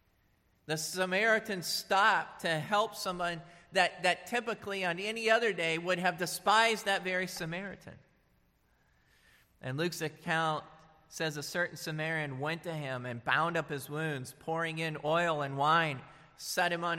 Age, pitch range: 40-59, 140-185 Hz